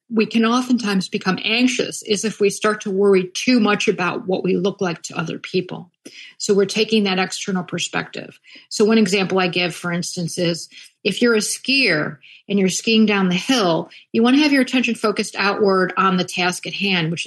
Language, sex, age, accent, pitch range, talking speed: English, female, 50-69, American, 180-235 Hz, 205 wpm